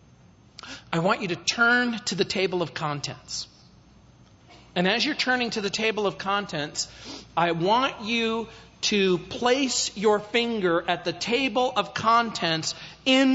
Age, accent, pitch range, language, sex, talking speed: 40-59, American, 185-245 Hz, English, male, 140 wpm